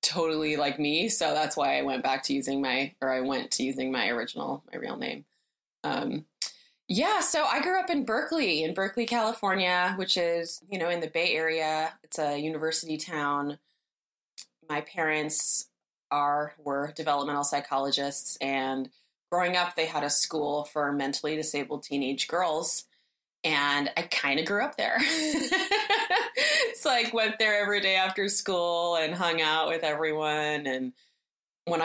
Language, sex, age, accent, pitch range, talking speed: English, female, 20-39, American, 140-185 Hz, 160 wpm